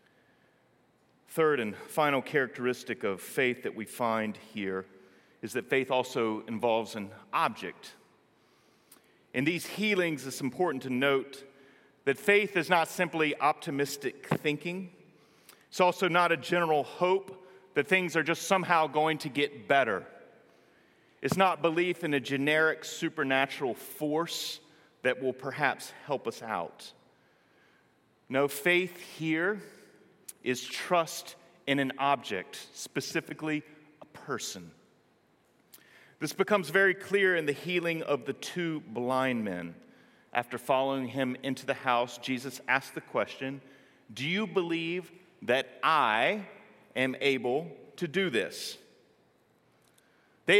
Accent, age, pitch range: American, 40-59, 135-185 Hz